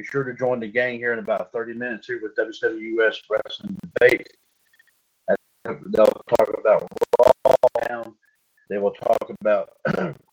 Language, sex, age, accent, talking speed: English, male, 40-59, American, 145 wpm